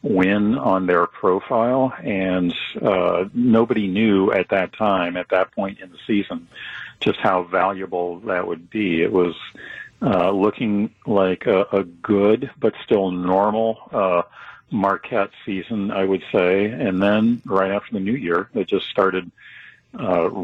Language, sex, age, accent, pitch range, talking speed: English, male, 50-69, American, 90-105 Hz, 150 wpm